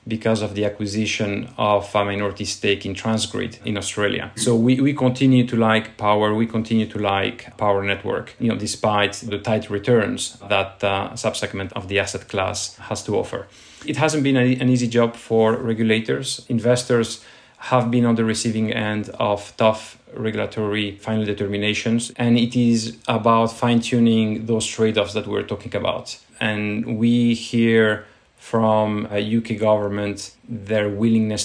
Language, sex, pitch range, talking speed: English, male, 105-115 Hz, 160 wpm